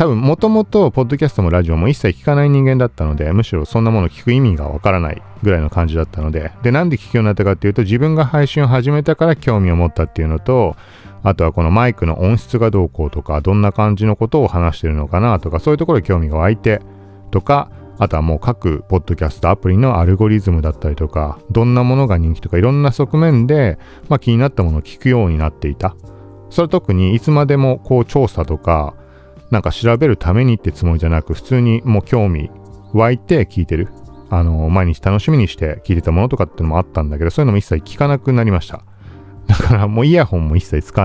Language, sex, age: Japanese, male, 40-59